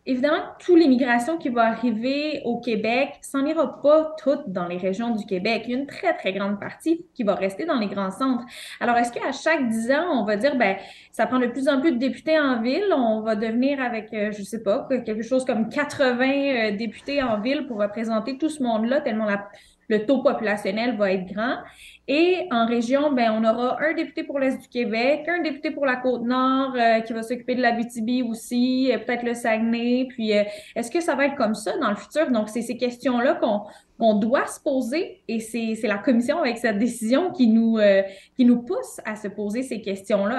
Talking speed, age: 220 wpm, 20-39